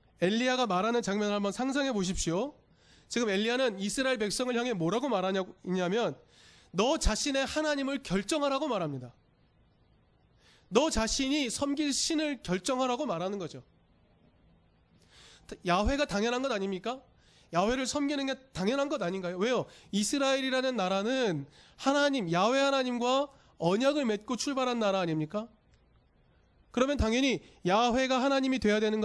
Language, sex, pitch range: Korean, male, 190-270 Hz